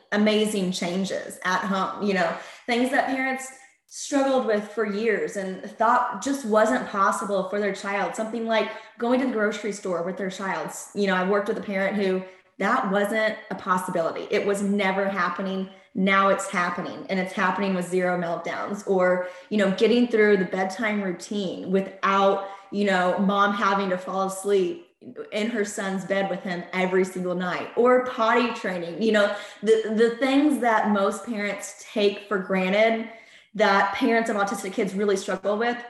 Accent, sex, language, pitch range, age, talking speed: American, female, English, 190-220 Hz, 10-29, 170 wpm